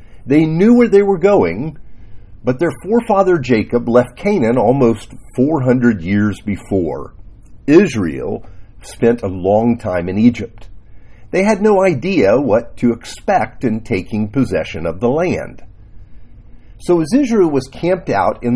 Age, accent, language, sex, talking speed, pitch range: 50-69, American, English, male, 140 wpm, 105-155 Hz